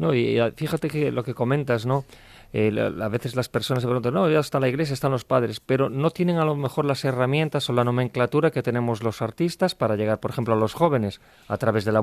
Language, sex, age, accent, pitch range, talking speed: Spanish, male, 40-59, Spanish, 115-140 Hz, 255 wpm